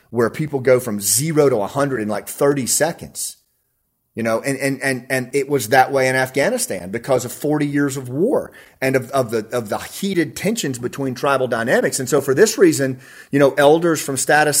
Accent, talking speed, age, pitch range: American, 205 wpm, 30-49, 125-160 Hz